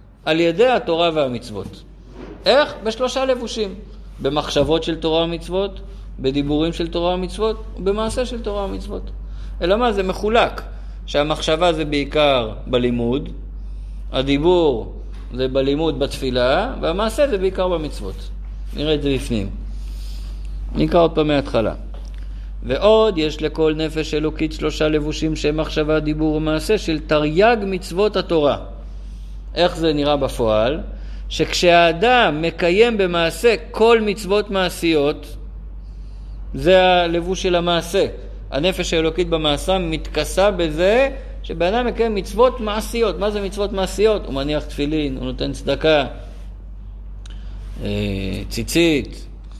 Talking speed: 110 wpm